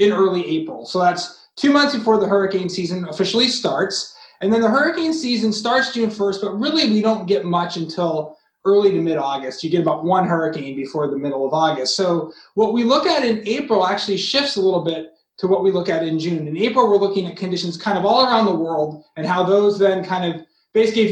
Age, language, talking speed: 20-39, English, 225 wpm